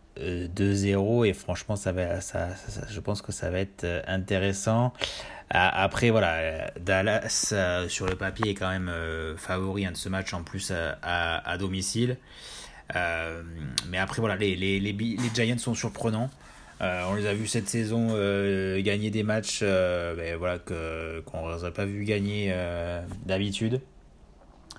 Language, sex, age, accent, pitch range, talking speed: French, male, 20-39, French, 90-110 Hz, 150 wpm